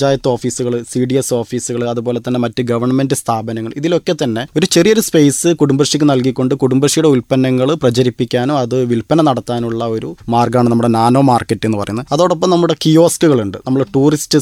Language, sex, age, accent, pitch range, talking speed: Malayalam, male, 20-39, native, 120-150 Hz, 150 wpm